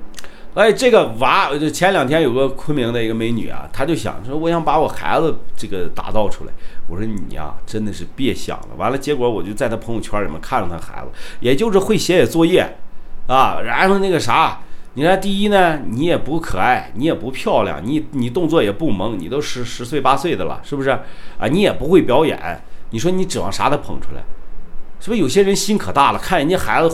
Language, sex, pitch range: Chinese, male, 110-165 Hz